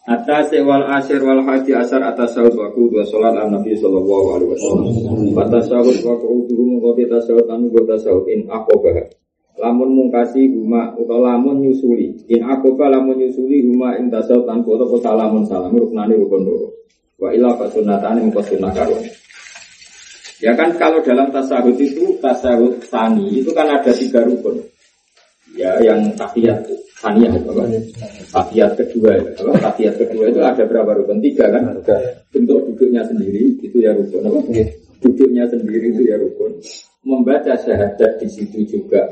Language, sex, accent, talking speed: Indonesian, male, native, 95 wpm